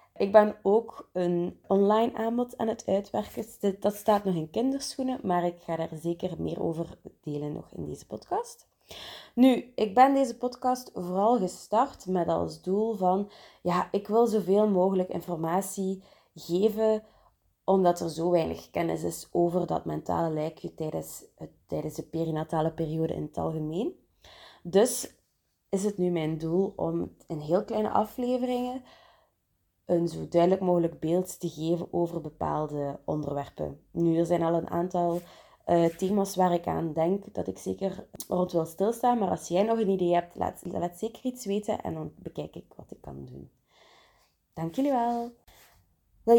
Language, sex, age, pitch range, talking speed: Dutch, female, 20-39, 165-215 Hz, 160 wpm